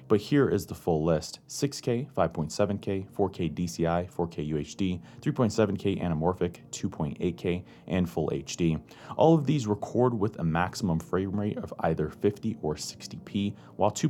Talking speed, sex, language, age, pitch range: 140 wpm, male, English, 30-49, 85-110 Hz